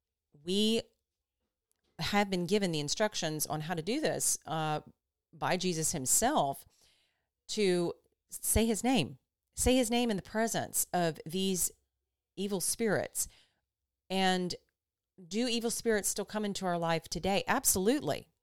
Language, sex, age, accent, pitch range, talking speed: English, female, 30-49, American, 150-190 Hz, 130 wpm